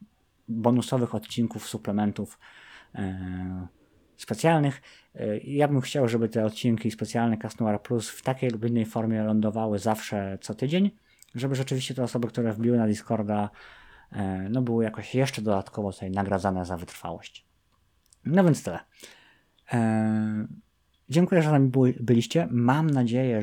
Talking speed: 140 wpm